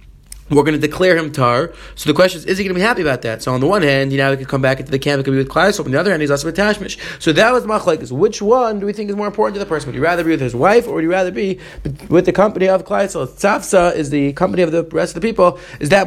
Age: 30-49